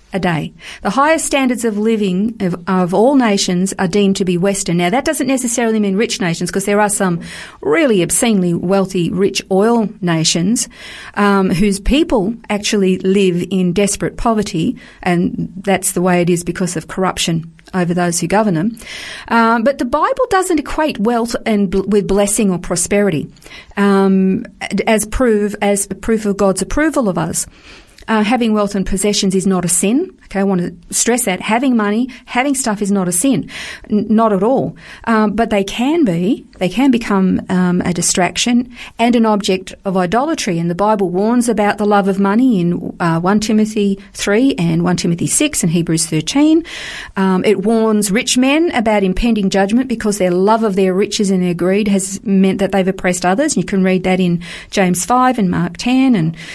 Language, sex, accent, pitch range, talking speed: English, female, Australian, 185-230 Hz, 185 wpm